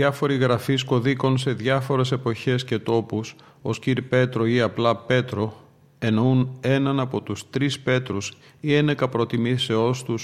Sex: male